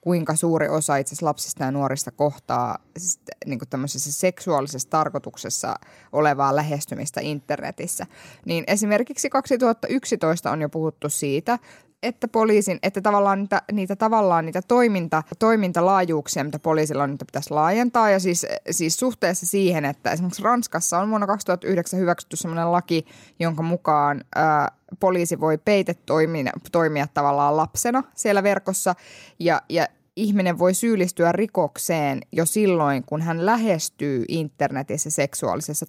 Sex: female